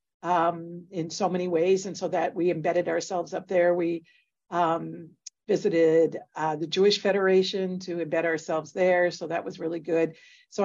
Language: English